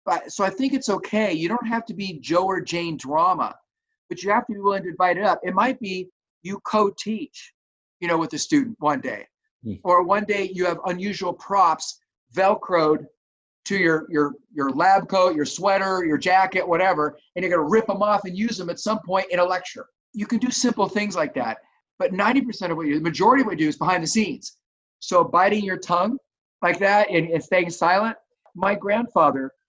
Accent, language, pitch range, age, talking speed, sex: American, English, 165-210 Hz, 40-59, 215 wpm, male